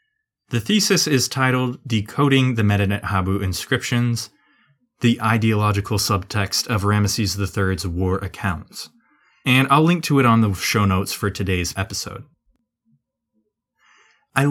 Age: 20-39